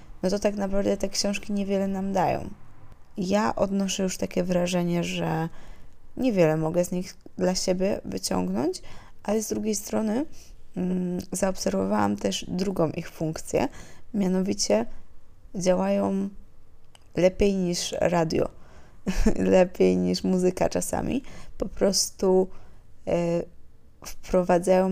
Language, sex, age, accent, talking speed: Polish, female, 20-39, native, 105 wpm